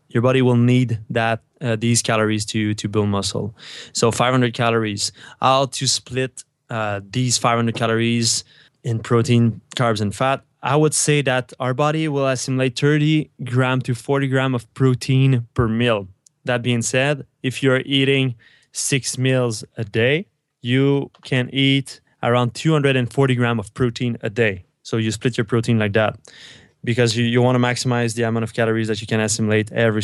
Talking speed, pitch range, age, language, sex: 170 wpm, 110-130 Hz, 20-39, English, male